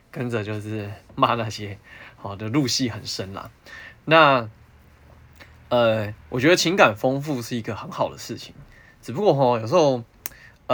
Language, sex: Chinese, male